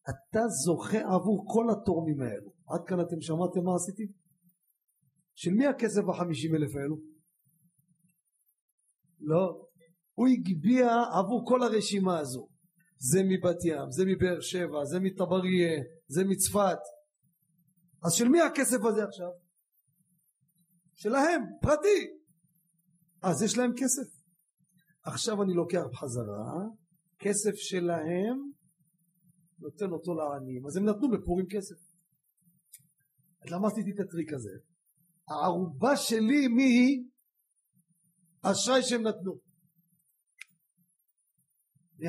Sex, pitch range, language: male, 170-215 Hz, Hebrew